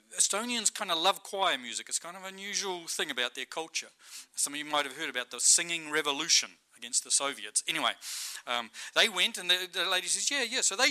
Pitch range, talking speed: 160-220 Hz, 225 wpm